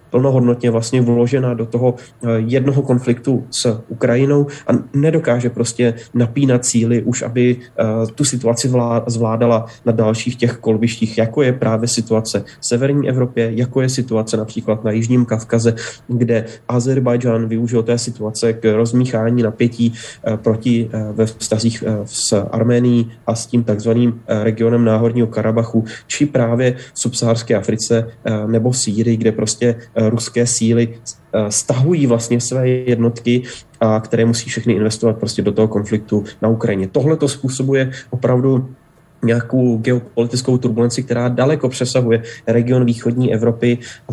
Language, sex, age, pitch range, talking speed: Slovak, male, 30-49, 110-125 Hz, 135 wpm